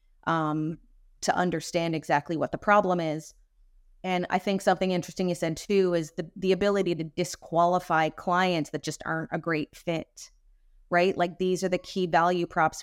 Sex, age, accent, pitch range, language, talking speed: female, 30-49, American, 160-185 Hz, English, 175 wpm